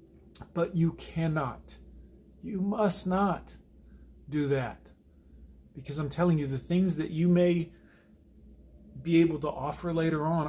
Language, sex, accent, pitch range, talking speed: English, male, American, 135-160 Hz, 130 wpm